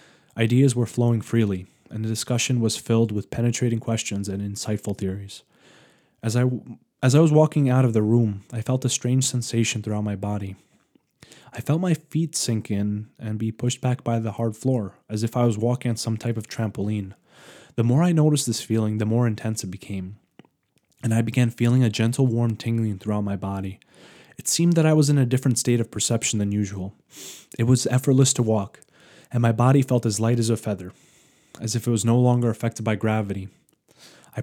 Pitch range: 105-125 Hz